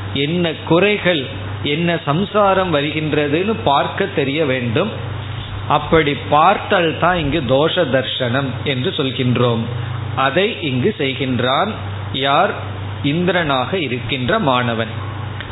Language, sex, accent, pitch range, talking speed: Tamil, male, native, 120-165 Hz, 90 wpm